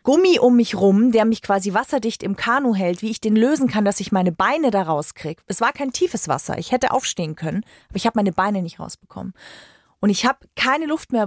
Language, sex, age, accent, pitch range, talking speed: German, female, 40-59, German, 200-260 Hz, 235 wpm